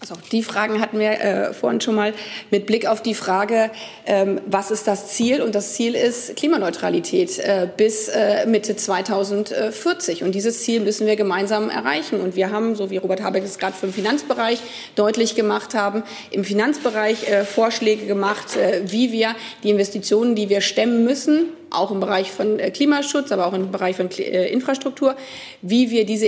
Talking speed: 180 wpm